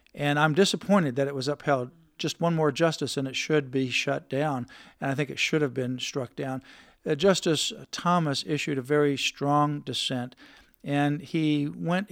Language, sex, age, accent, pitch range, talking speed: English, male, 50-69, American, 130-155 Hz, 185 wpm